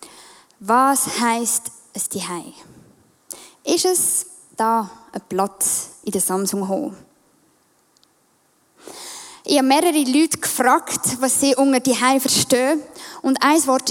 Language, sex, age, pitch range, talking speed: English, female, 10-29, 230-300 Hz, 120 wpm